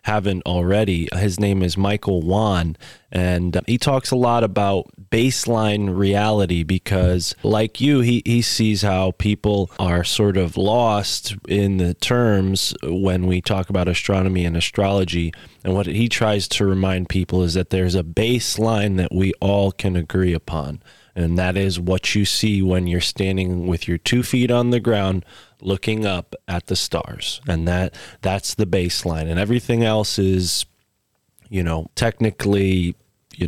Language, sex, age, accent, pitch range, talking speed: English, male, 20-39, American, 90-105 Hz, 160 wpm